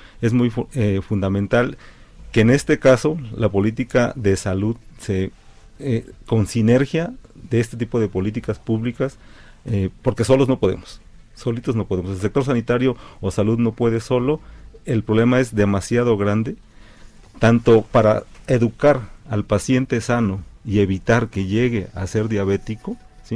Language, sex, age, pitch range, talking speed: Spanish, male, 40-59, 100-125 Hz, 145 wpm